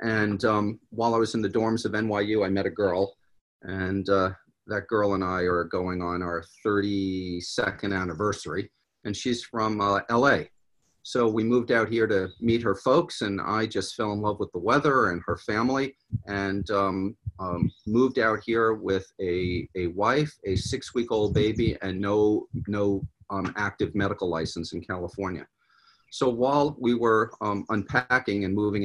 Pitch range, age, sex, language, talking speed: 95-115 Hz, 40-59, male, English, 170 wpm